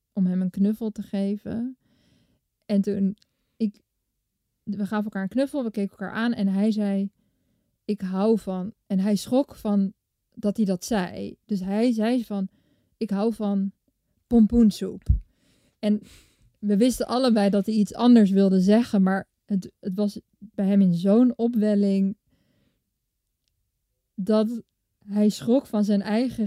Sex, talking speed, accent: female, 145 wpm, Dutch